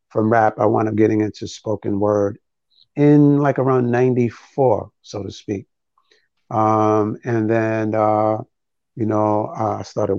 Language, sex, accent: English, male, American